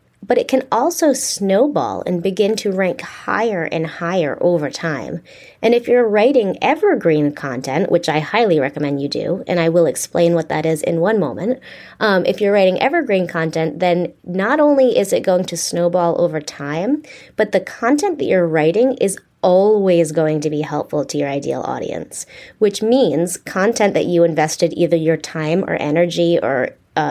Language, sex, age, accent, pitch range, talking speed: English, female, 20-39, American, 160-215 Hz, 180 wpm